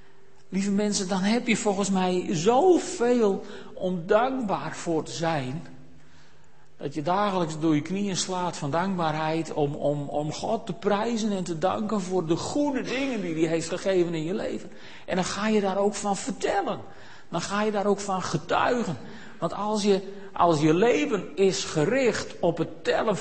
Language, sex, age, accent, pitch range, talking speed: Dutch, male, 50-69, Dutch, 155-220 Hz, 170 wpm